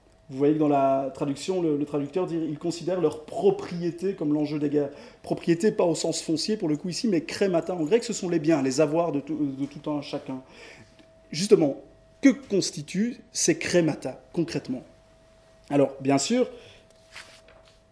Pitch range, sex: 140-175 Hz, male